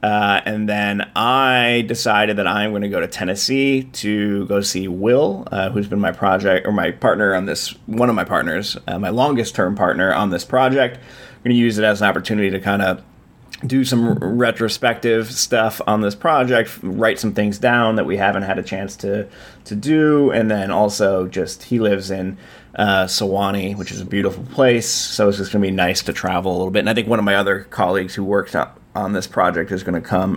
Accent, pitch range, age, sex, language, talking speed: American, 95-115 Hz, 30-49, male, English, 225 wpm